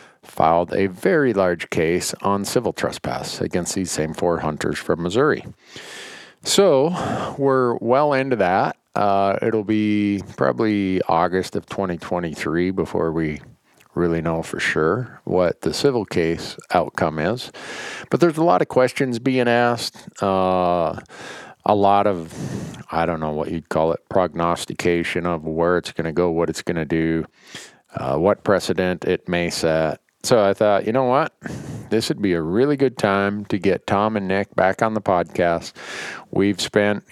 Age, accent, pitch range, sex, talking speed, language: 50-69, American, 90-115 Hz, male, 160 wpm, English